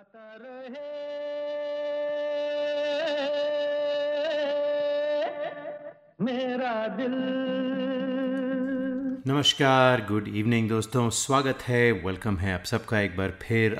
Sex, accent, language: male, native, Hindi